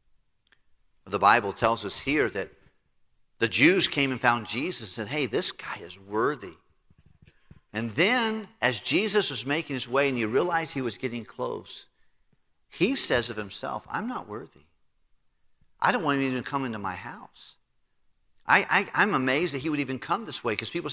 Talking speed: 180 wpm